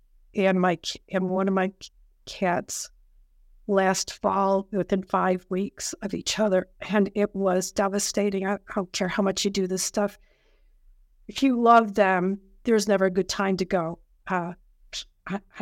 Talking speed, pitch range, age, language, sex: 160 wpm, 190-225 Hz, 50-69, English, female